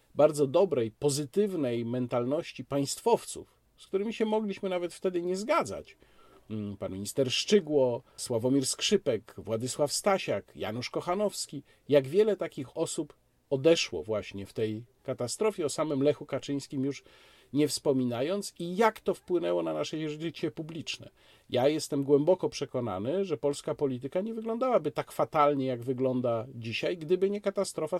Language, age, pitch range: Polish, 50-69, 130-170 Hz